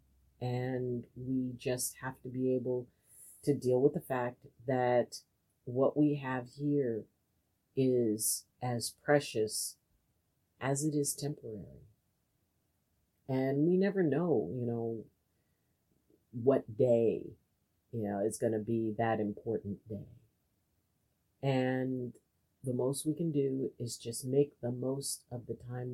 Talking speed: 125 wpm